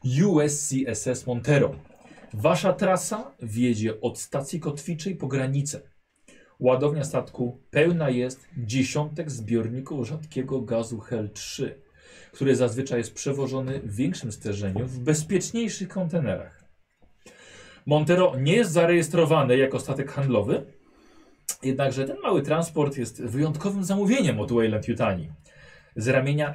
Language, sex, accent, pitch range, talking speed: Polish, male, native, 120-160 Hz, 110 wpm